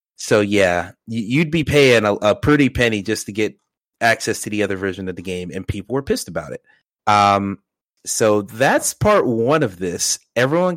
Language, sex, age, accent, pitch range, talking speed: English, male, 30-49, American, 95-125 Hz, 190 wpm